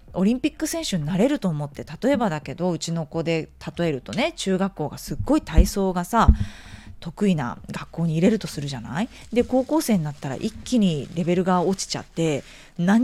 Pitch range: 165-275 Hz